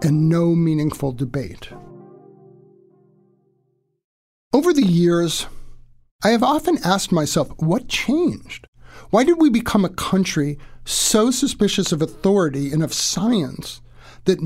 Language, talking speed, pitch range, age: English, 115 wpm, 140-185 Hz, 50-69